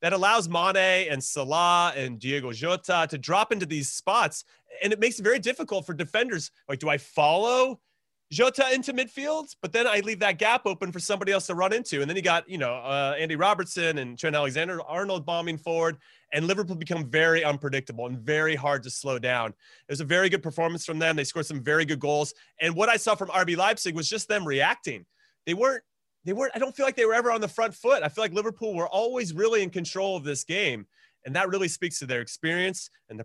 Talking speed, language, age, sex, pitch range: 230 wpm, English, 30-49, male, 145-200 Hz